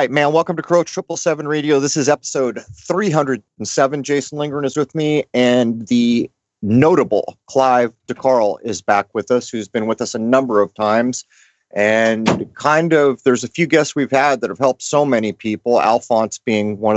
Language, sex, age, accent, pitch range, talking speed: English, male, 30-49, American, 100-125 Hz, 190 wpm